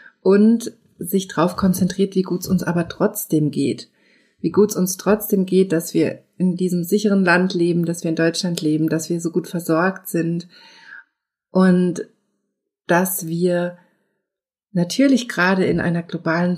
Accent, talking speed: German, 155 wpm